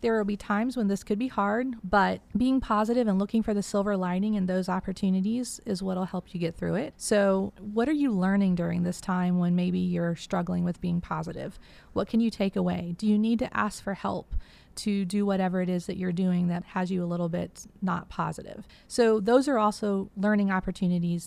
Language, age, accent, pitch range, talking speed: English, 30-49, American, 185-225 Hz, 215 wpm